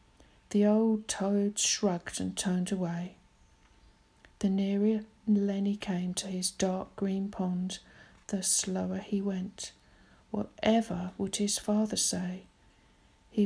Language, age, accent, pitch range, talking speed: English, 50-69, British, 195-235 Hz, 115 wpm